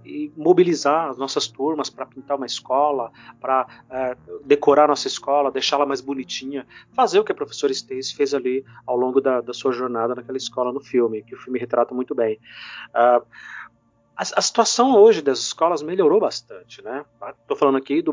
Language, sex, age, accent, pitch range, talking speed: Portuguese, male, 30-49, Brazilian, 120-170 Hz, 180 wpm